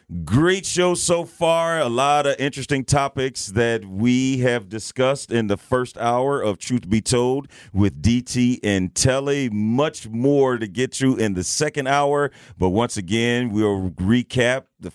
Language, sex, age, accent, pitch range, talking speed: English, male, 40-59, American, 110-145 Hz, 160 wpm